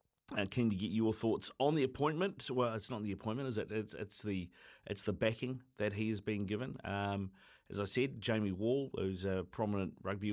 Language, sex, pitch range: English, male, 100-115 Hz